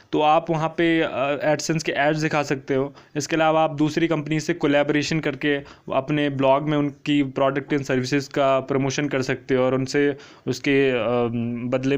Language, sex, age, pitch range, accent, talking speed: Hindi, male, 20-39, 130-155 Hz, native, 170 wpm